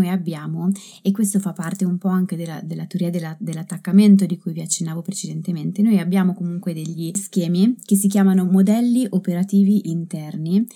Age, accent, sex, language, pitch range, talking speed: 20-39, native, female, Italian, 175-200 Hz, 160 wpm